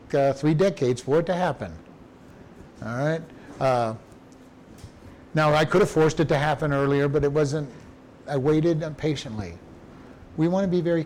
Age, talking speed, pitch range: 50-69, 165 wpm, 135-180 Hz